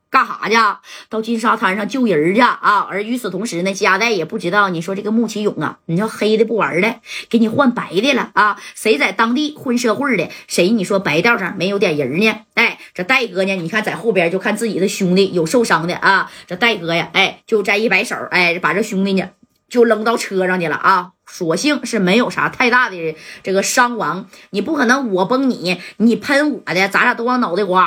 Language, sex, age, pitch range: Chinese, female, 20-39, 195-265 Hz